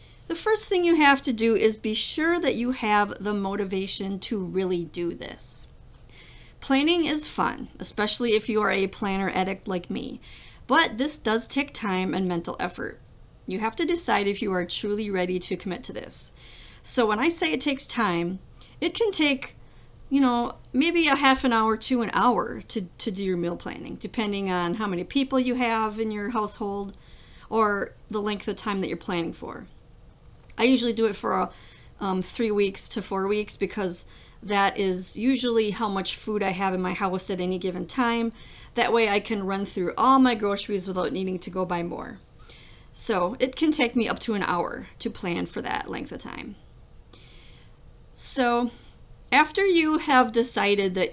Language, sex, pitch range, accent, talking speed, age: English, female, 195-245 Hz, American, 190 wpm, 40-59